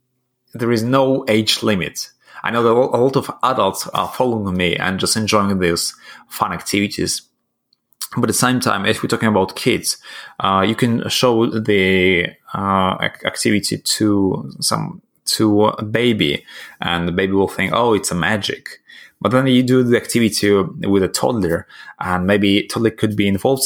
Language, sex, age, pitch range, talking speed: English, male, 20-39, 95-120 Hz, 170 wpm